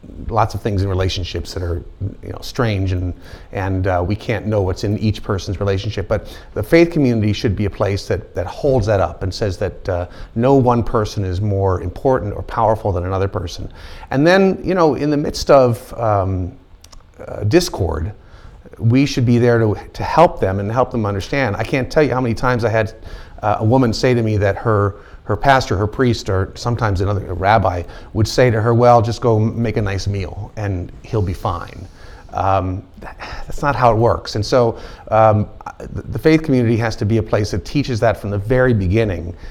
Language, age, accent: English, 30-49, American